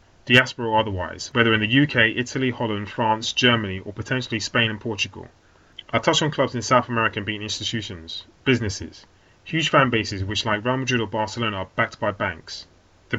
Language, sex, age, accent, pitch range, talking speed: English, male, 30-49, British, 100-120 Hz, 180 wpm